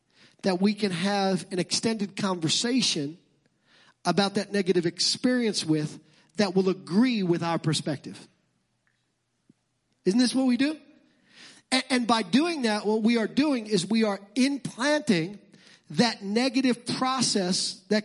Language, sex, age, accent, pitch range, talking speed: English, male, 40-59, American, 205-255 Hz, 135 wpm